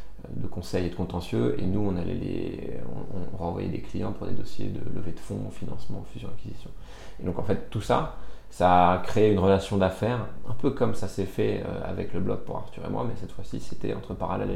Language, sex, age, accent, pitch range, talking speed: French, male, 30-49, French, 90-100 Hz, 230 wpm